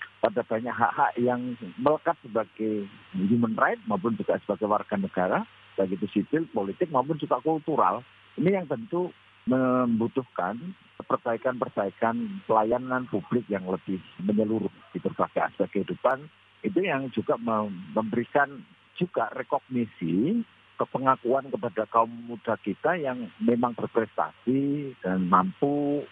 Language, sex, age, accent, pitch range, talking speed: Indonesian, male, 50-69, native, 105-140 Hz, 115 wpm